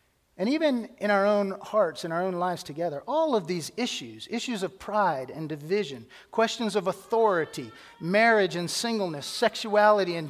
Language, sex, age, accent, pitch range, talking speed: English, male, 40-59, American, 155-210 Hz, 165 wpm